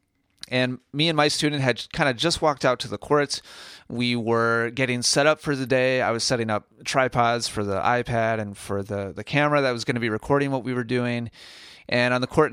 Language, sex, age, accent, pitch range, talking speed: English, male, 30-49, American, 115-140 Hz, 235 wpm